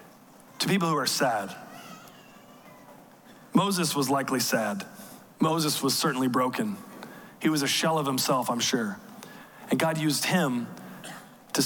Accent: American